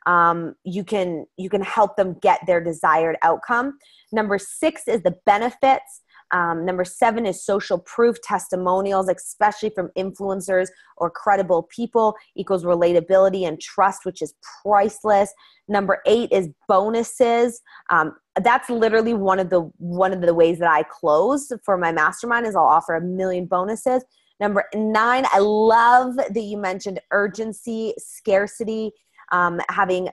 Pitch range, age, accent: 185-235 Hz, 20-39, American